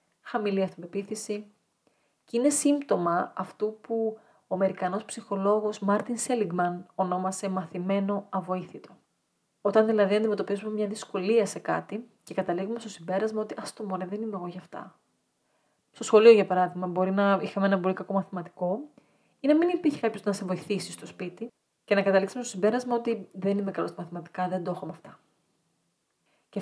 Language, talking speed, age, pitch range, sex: Greek, 165 wpm, 30-49, 185-215 Hz, female